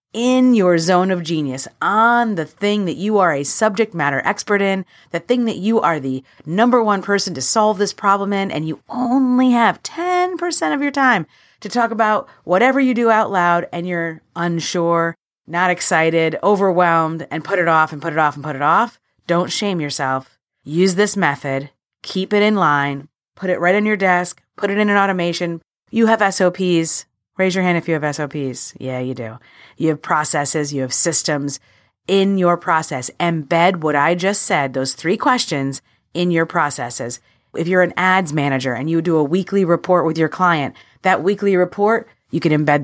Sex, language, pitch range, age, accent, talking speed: female, English, 145-195 Hz, 30-49, American, 195 wpm